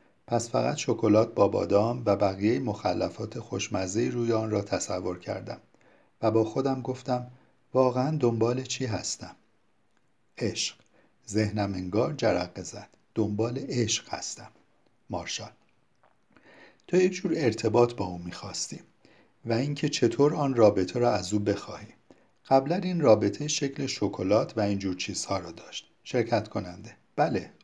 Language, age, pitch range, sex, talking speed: Persian, 50-69, 105-135 Hz, male, 130 wpm